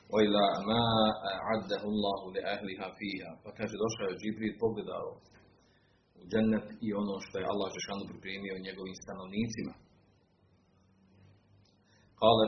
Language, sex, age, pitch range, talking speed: Croatian, male, 40-59, 95-110 Hz, 105 wpm